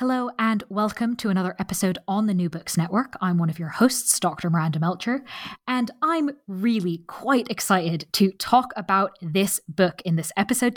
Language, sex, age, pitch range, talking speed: English, female, 20-39, 180-240 Hz, 180 wpm